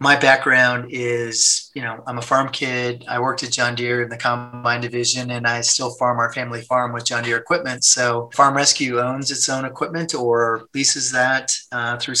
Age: 30-49